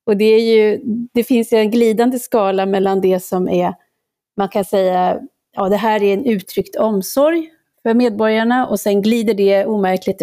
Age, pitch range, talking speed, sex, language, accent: 30-49, 195-230 Hz, 180 wpm, female, Swedish, native